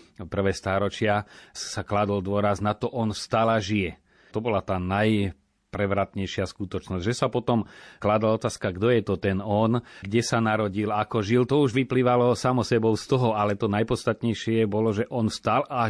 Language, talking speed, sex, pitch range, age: Slovak, 175 wpm, male, 95-115 Hz, 30-49